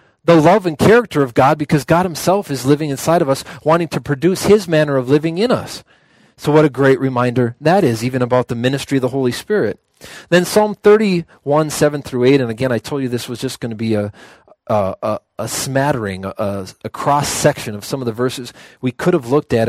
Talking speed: 220 wpm